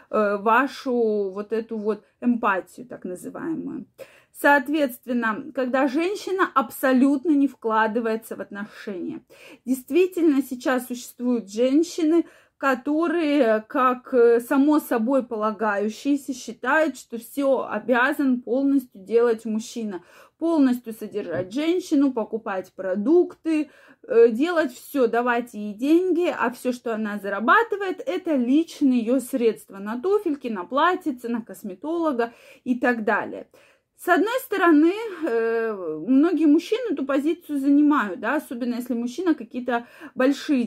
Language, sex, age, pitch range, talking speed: Russian, female, 20-39, 220-290 Hz, 110 wpm